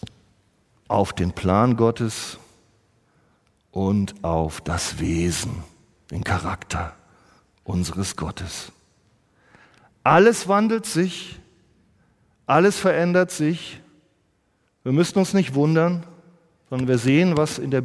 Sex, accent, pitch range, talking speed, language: male, German, 110-180 Hz, 100 wpm, German